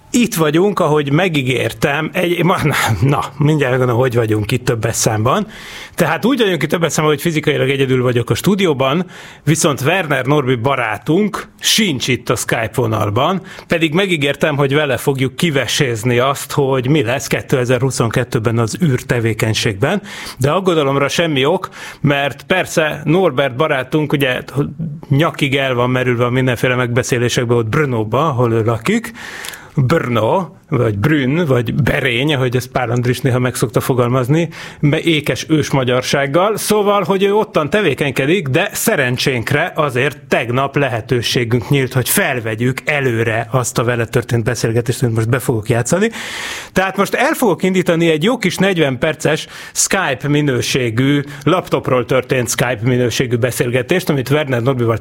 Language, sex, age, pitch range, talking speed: Hungarian, male, 30-49, 125-160 Hz, 140 wpm